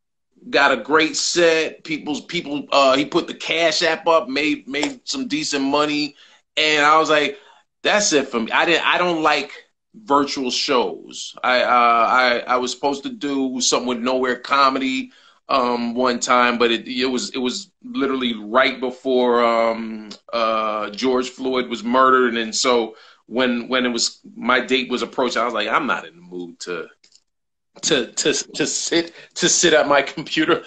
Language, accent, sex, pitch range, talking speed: English, American, male, 120-150 Hz, 180 wpm